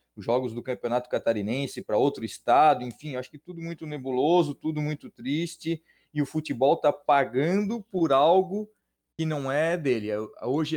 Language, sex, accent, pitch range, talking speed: Portuguese, male, Brazilian, 125-170 Hz, 160 wpm